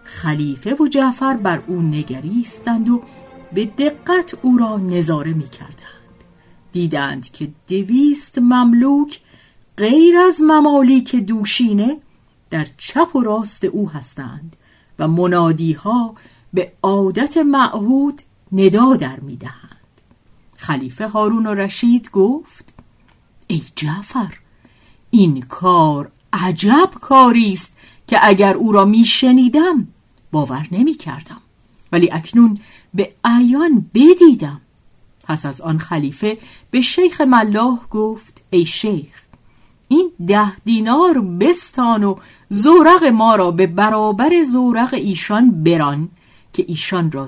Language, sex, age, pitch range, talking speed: Persian, female, 50-69, 160-245 Hz, 105 wpm